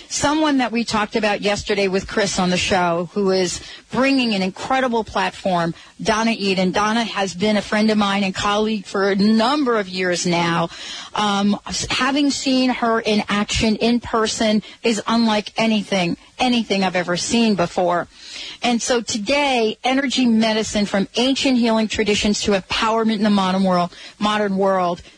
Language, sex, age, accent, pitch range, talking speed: English, female, 40-59, American, 185-230 Hz, 160 wpm